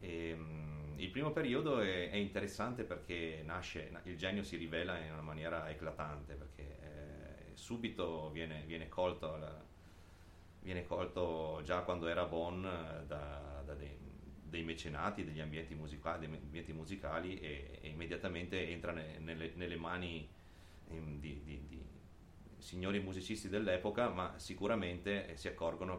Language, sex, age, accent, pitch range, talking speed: Italian, male, 30-49, native, 80-90 Hz, 140 wpm